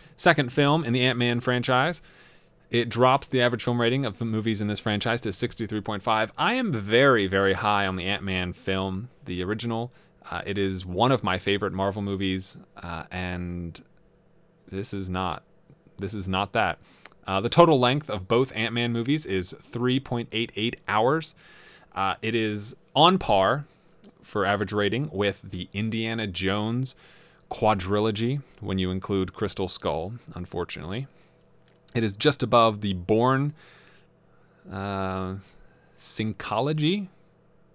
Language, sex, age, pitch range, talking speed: English, male, 20-39, 95-130 Hz, 140 wpm